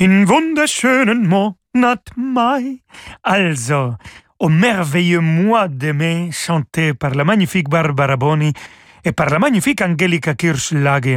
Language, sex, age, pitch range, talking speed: French, male, 40-59, 140-195 Hz, 125 wpm